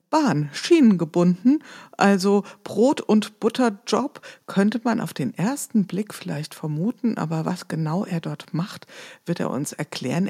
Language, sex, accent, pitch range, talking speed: German, female, German, 165-210 Hz, 140 wpm